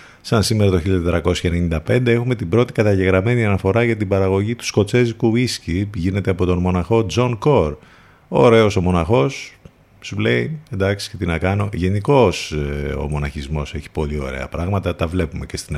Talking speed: 160 wpm